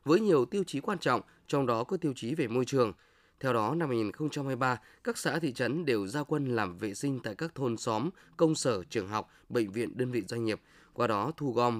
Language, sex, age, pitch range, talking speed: Vietnamese, male, 20-39, 115-155 Hz, 235 wpm